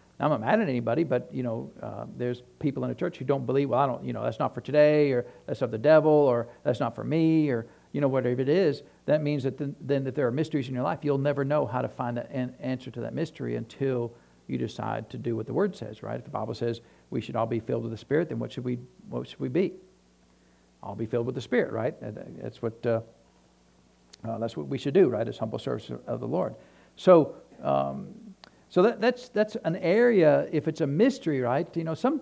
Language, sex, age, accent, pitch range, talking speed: English, male, 60-79, American, 120-155 Hz, 250 wpm